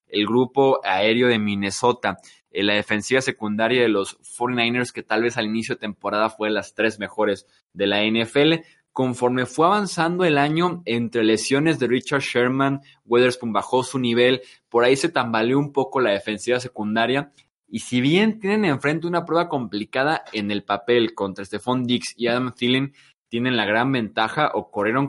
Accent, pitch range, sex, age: Mexican, 105-135 Hz, male, 20-39